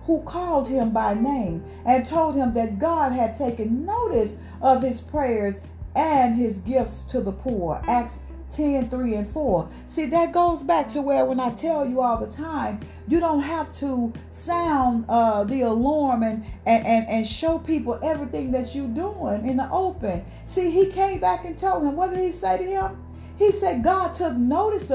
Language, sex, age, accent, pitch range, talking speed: English, female, 40-59, American, 240-325 Hz, 190 wpm